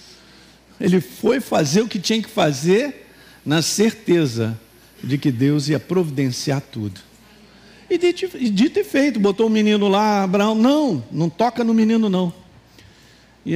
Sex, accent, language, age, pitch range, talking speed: male, Brazilian, Portuguese, 50-69, 125-205 Hz, 145 wpm